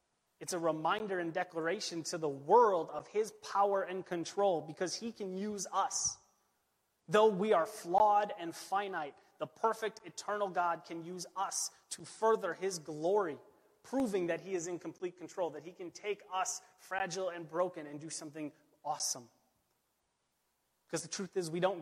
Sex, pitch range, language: male, 155-185 Hz, English